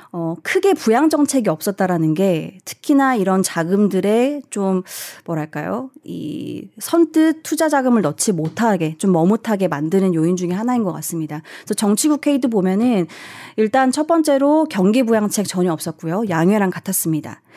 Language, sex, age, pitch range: Korean, female, 30-49, 170-235 Hz